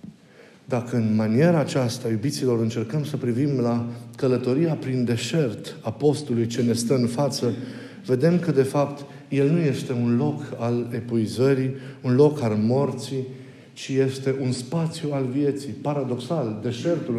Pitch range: 120-150 Hz